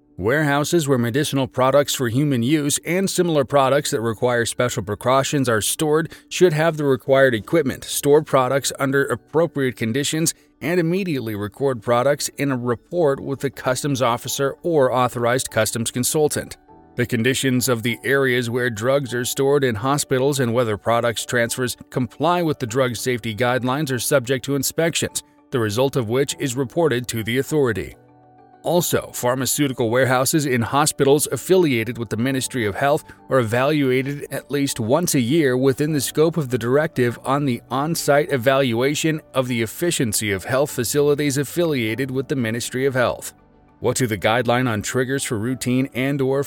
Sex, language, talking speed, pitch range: male, English, 160 wpm, 120-145 Hz